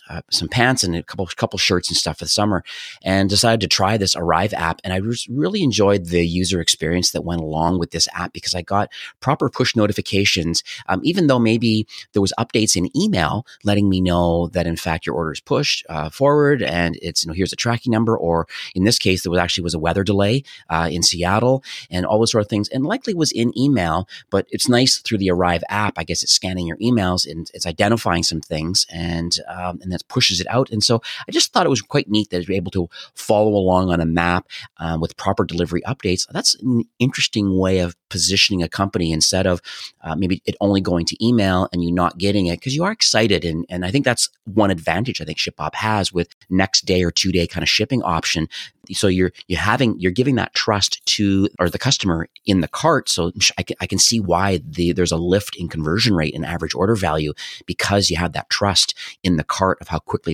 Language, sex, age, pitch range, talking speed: English, male, 30-49, 85-110 Hz, 230 wpm